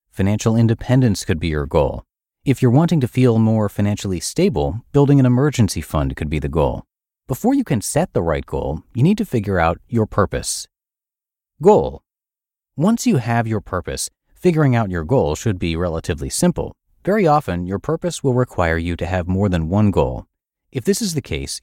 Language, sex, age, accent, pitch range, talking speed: English, male, 30-49, American, 90-125 Hz, 190 wpm